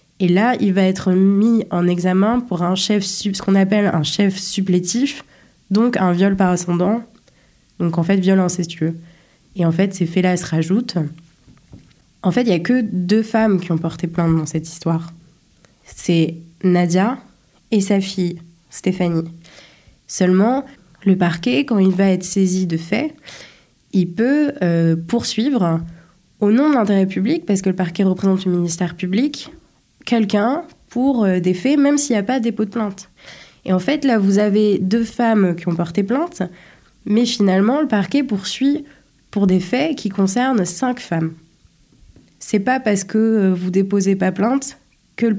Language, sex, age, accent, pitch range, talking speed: French, female, 20-39, French, 180-220 Hz, 170 wpm